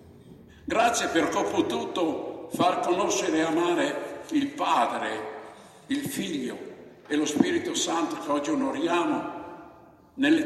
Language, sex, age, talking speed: Italian, male, 60-79, 115 wpm